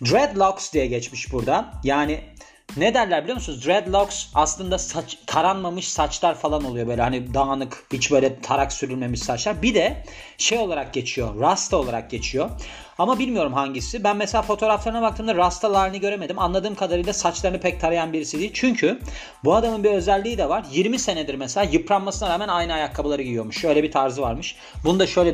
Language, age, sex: Turkish, 40-59, male